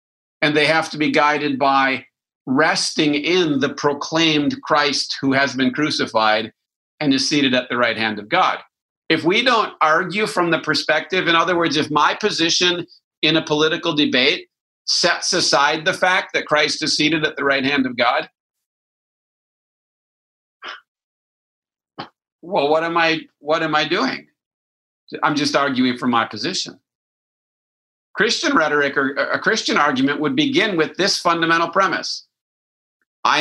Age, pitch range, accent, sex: 50-69, 140-175 Hz, American, male